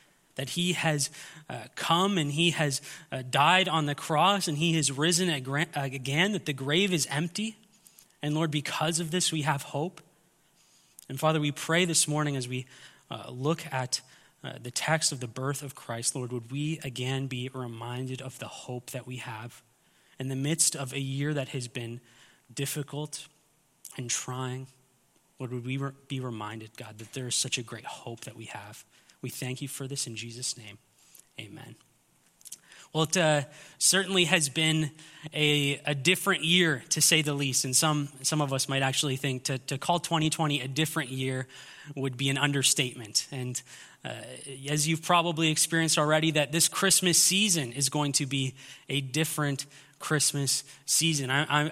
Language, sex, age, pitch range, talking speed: English, male, 20-39, 135-160 Hz, 175 wpm